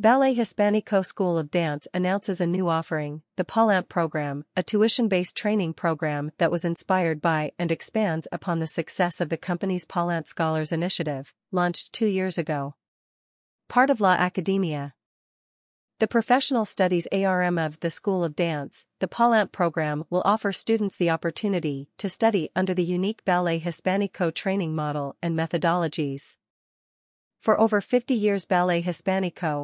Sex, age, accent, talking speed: female, 40-59, American, 150 wpm